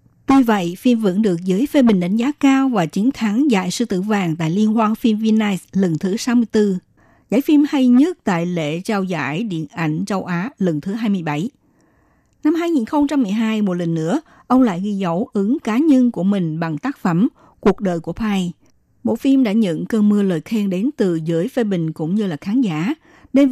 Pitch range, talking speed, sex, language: 175-245 Hz, 205 wpm, female, Vietnamese